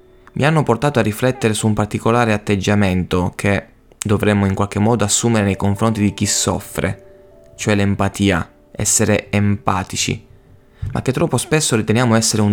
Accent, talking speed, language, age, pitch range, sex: native, 150 wpm, Italian, 20-39, 100-120 Hz, male